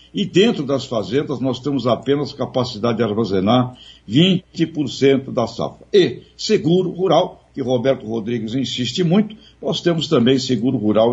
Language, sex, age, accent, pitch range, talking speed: Portuguese, male, 60-79, Brazilian, 120-165 Hz, 140 wpm